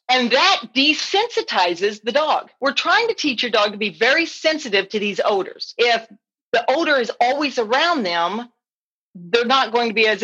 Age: 40-59